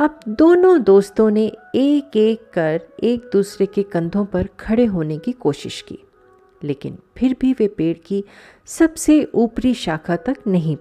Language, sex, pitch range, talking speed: Hindi, female, 165-260 Hz, 155 wpm